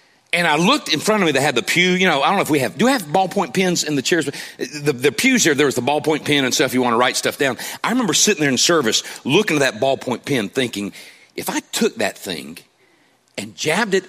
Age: 40-59